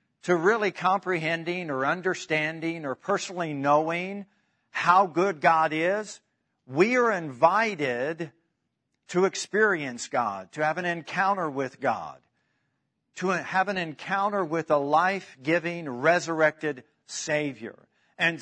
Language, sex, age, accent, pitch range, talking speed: English, male, 50-69, American, 145-185 Hz, 110 wpm